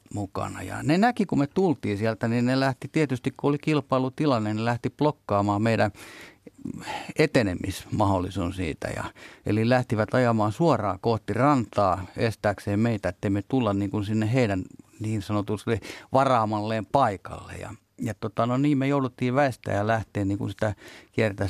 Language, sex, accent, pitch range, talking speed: Finnish, male, native, 100-125 Hz, 150 wpm